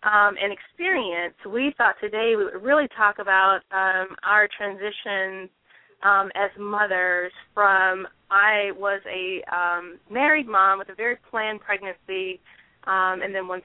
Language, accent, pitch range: English, American, 190-220 Hz